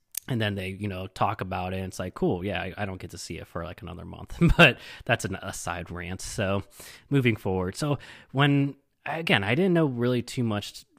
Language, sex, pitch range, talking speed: English, male, 95-120 Hz, 225 wpm